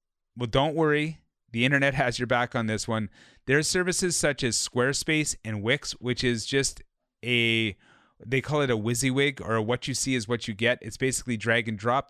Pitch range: 115-135 Hz